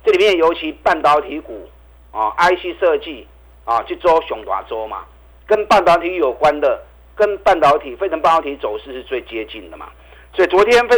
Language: Chinese